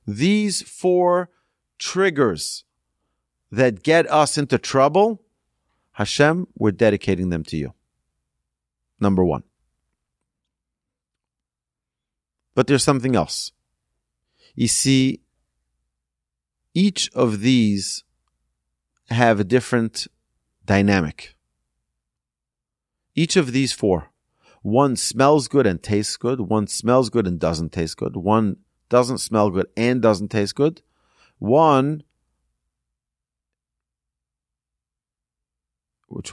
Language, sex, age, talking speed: English, male, 40-59, 90 wpm